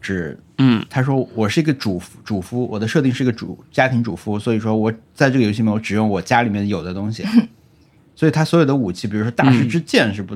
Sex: male